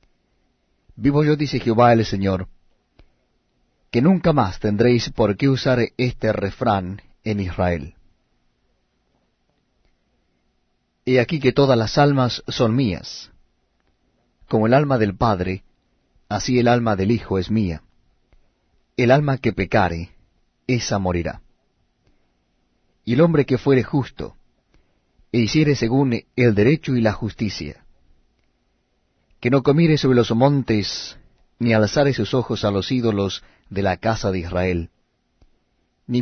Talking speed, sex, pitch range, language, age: 125 wpm, male, 95-130 Hz, Spanish, 40-59